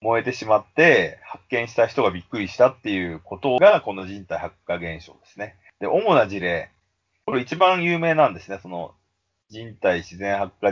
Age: 40-59